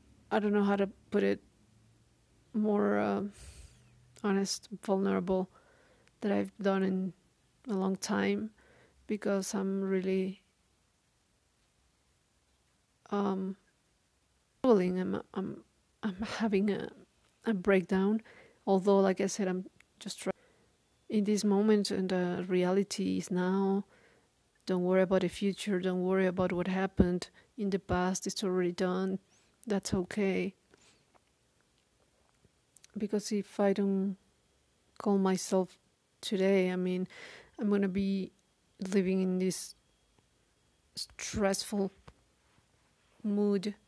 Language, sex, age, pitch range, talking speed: English, female, 40-59, 185-205 Hz, 110 wpm